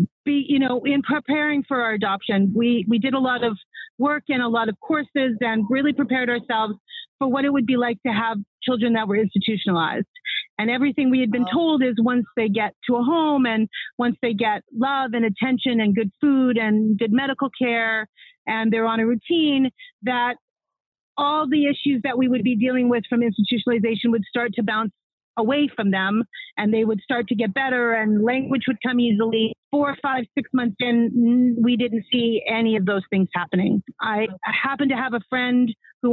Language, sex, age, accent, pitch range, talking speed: English, female, 40-59, American, 215-260 Hz, 200 wpm